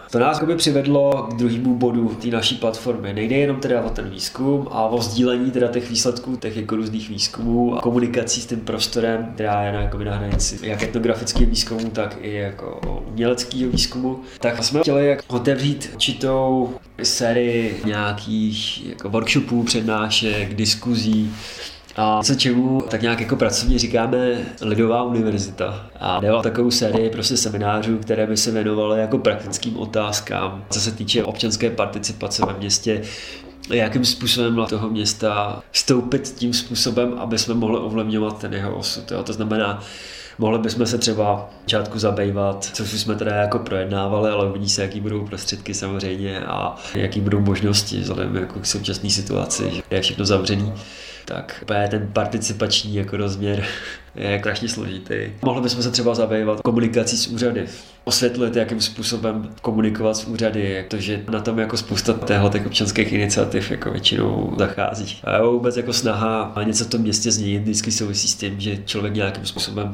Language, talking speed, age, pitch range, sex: Czech, 160 wpm, 20-39, 105-120 Hz, male